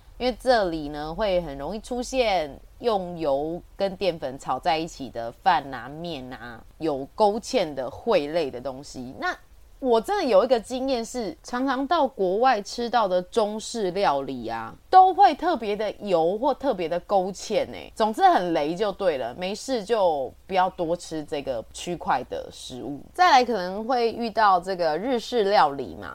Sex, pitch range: female, 160-250 Hz